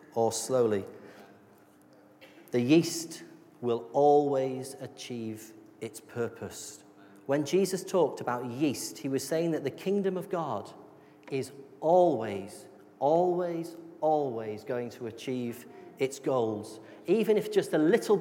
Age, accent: 40-59, British